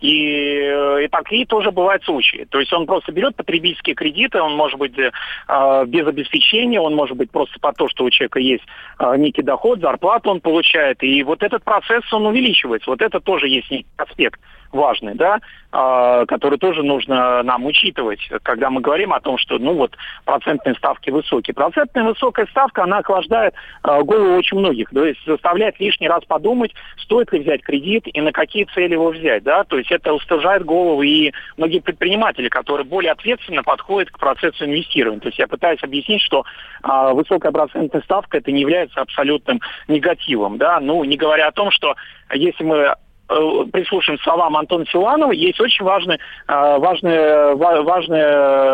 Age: 40-59